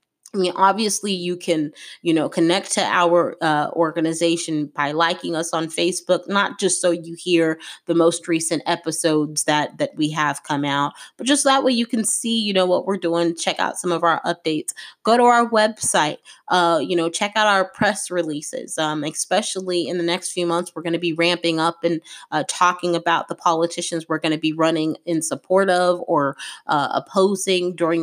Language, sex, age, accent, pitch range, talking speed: English, female, 20-39, American, 160-190 Hz, 200 wpm